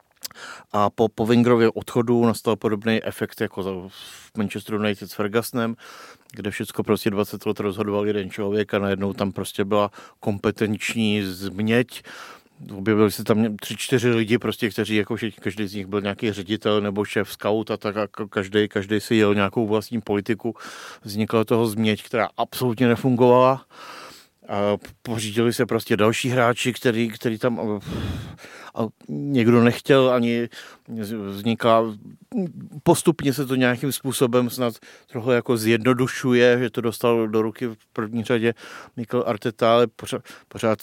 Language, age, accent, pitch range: Czech, 50-69, native, 105-120 Hz